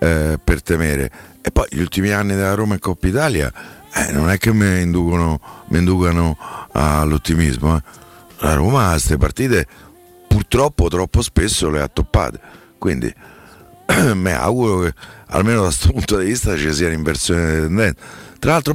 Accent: native